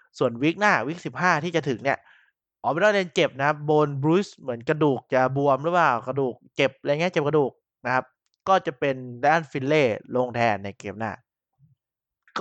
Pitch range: 120-155 Hz